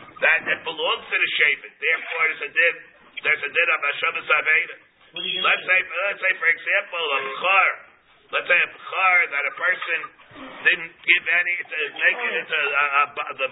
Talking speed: 180 wpm